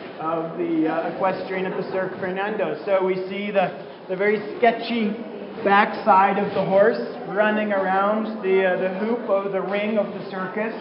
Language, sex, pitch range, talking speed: English, male, 185-210 Hz, 170 wpm